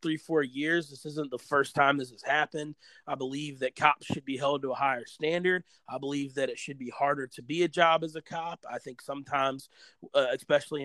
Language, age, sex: English, 30-49, male